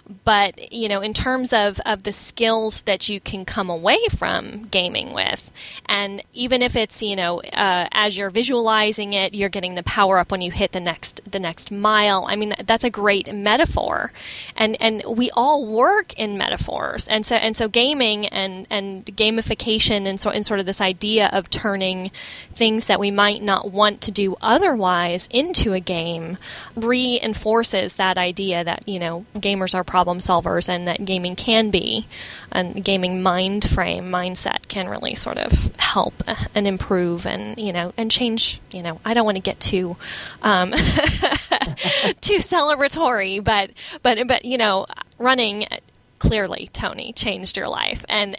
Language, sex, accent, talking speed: English, female, American, 170 wpm